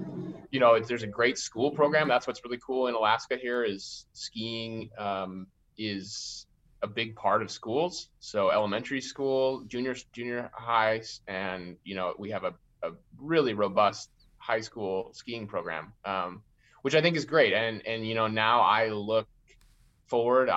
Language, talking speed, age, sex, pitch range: English, 165 wpm, 20-39, male, 100-125 Hz